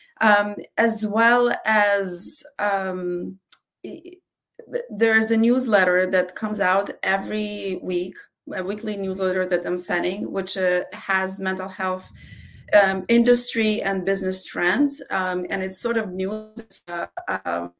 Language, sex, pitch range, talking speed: English, female, 180-220 Hz, 130 wpm